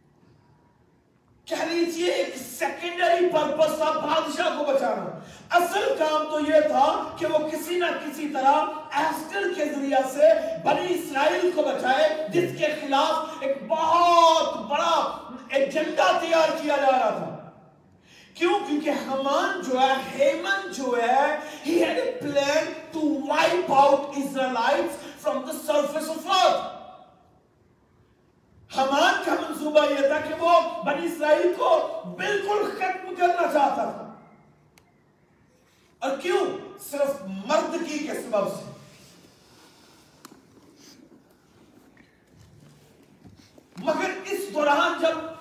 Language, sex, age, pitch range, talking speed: Urdu, male, 40-59, 285-335 Hz, 45 wpm